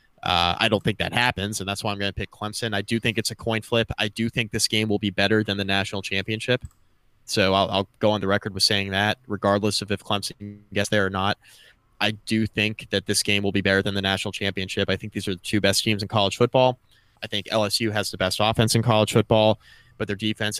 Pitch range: 100-115 Hz